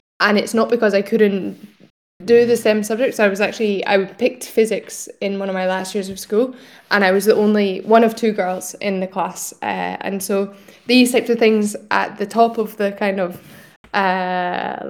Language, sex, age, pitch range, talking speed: English, female, 10-29, 190-215 Hz, 205 wpm